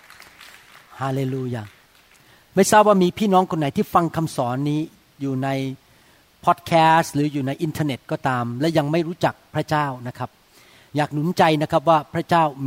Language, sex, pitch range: Thai, male, 135-195 Hz